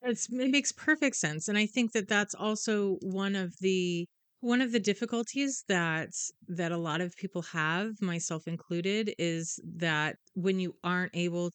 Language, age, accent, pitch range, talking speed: English, 30-49, American, 155-195 Hz, 170 wpm